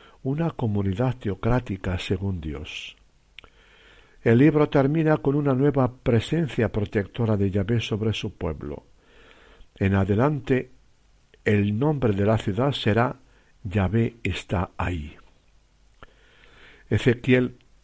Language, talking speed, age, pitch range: Spanish, 100 wpm, 60-79, 105-135 Hz